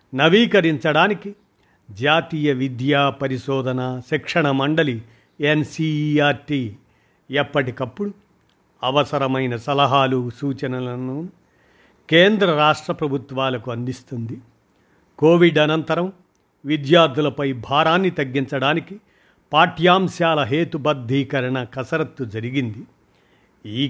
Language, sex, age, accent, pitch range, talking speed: Telugu, male, 50-69, native, 130-160 Hz, 65 wpm